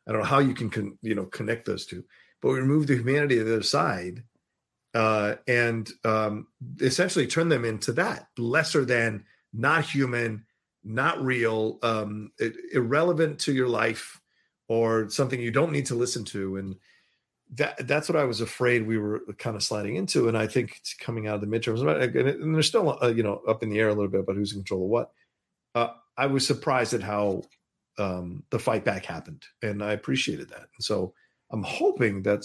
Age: 40-59